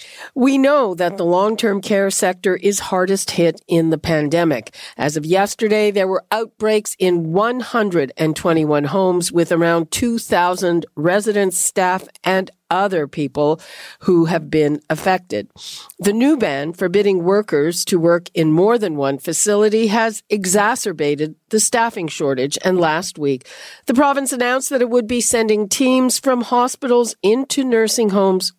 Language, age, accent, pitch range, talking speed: English, 50-69, American, 170-220 Hz, 145 wpm